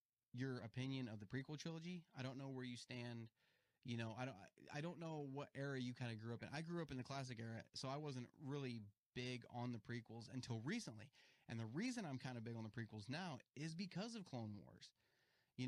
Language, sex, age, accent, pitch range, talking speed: English, male, 30-49, American, 115-155 Hz, 235 wpm